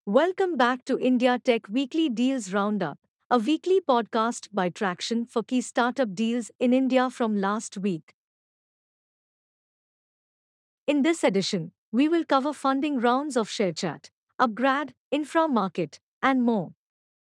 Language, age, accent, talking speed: English, 50-69, Indian, 125 wpm